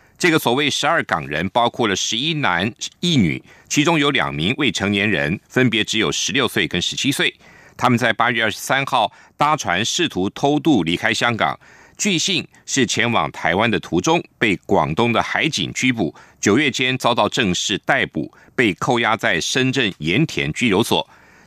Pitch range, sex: 105-155 Hz, male